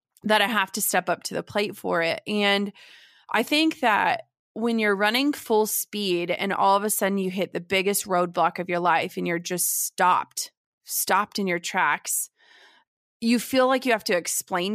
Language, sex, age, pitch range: English, female, 20-39, 185-230 Hz